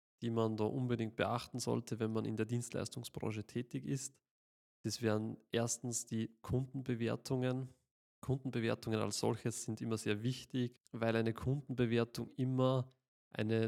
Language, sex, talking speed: German, male, 130 wpm